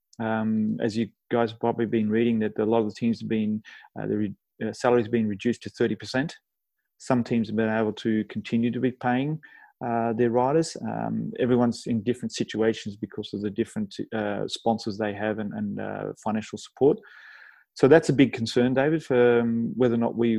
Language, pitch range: English, 110-130 Hz